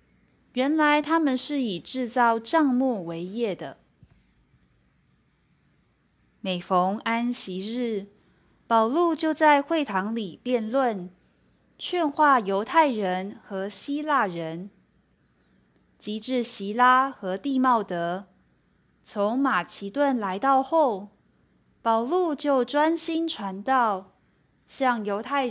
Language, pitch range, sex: Chinese, 195-275 Hz, female